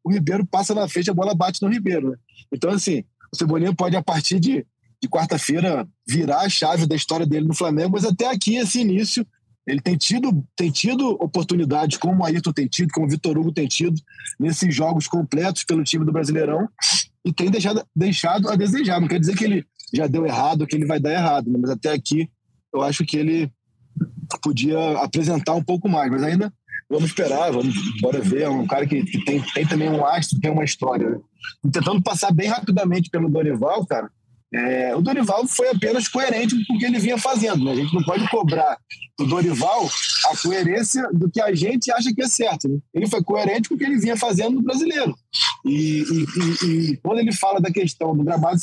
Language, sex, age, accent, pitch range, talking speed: Portuguese, male, 20-39, Brazilian, 155-200 Hz, 205 wpm